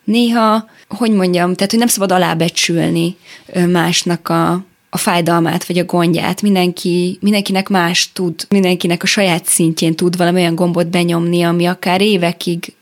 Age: 20-39